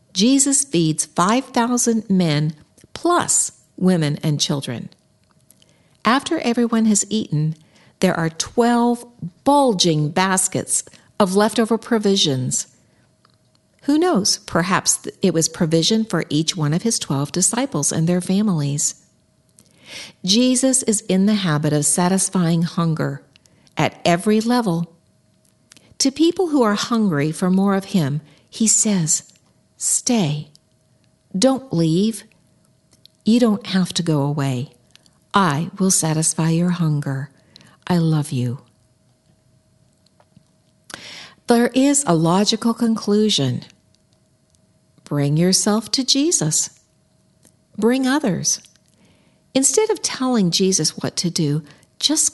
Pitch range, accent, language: 155-230 Hz, American, English